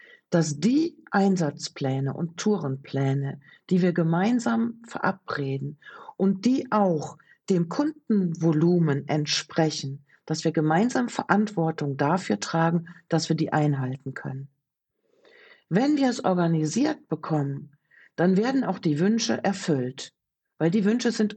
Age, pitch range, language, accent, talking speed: 60-79, 150-205 Hz, German, German, 115 wpm